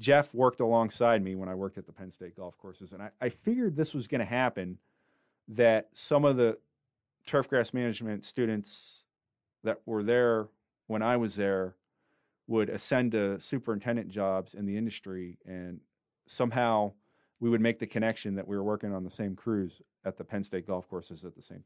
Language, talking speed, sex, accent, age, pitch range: English, 190 wpm, male, American, 30-49, 105-130 Hz